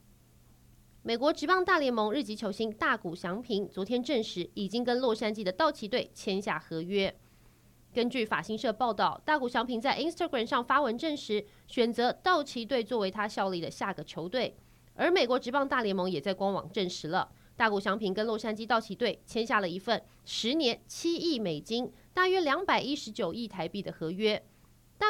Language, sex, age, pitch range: Chinese, female, 30-49, 195-260 Hz